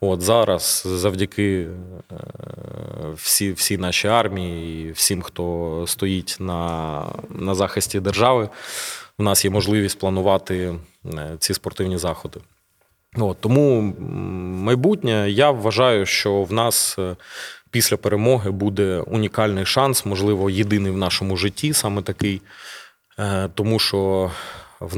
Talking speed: 110 wpm